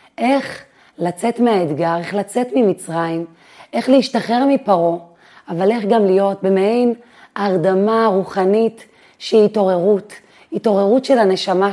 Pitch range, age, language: 185-225 Hz, 30-49, Hebrew